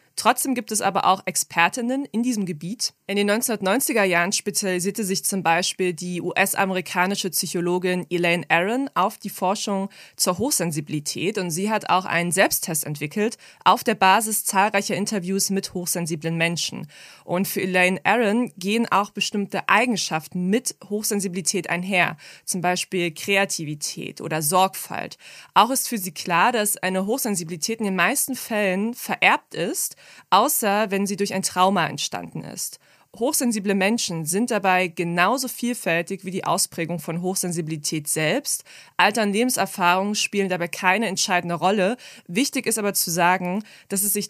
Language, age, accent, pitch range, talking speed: German, 20-39, German, 180-215 Hz, 145 wpm